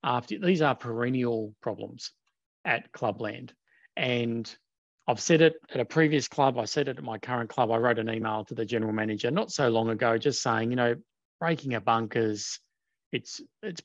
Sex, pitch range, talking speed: male, 115-145 Hz, 185 wpm